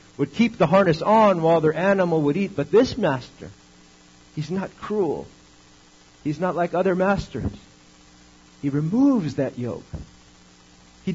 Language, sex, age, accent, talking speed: English, male, 50-69, American, 140 wpm